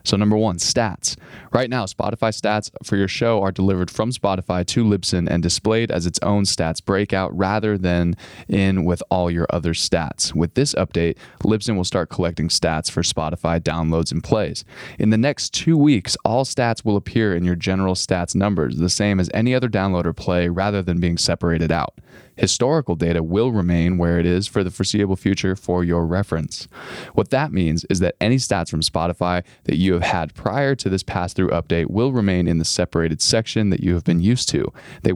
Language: English